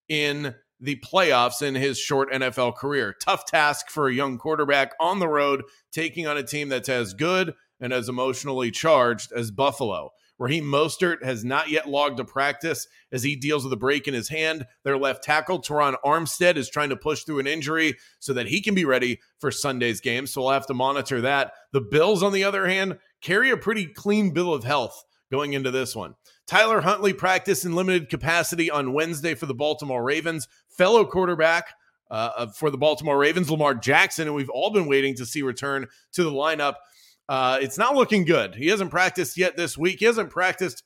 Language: English